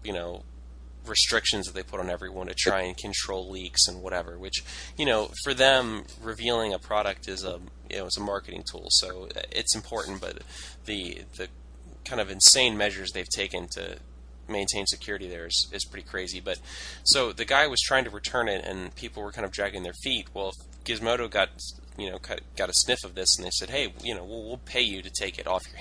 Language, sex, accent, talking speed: English, male, American, 215 wpm